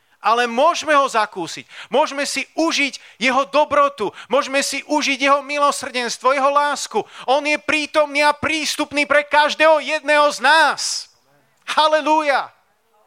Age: 40-59